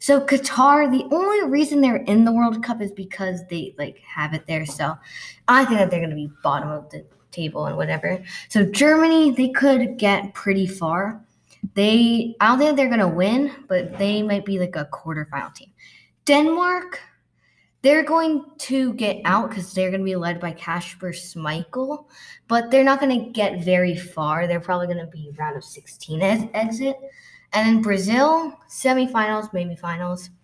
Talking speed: 180 wpm